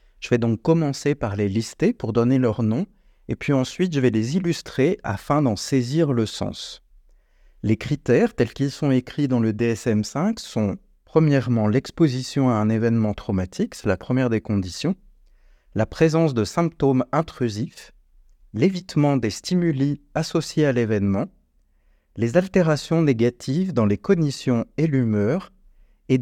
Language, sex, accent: French, male, French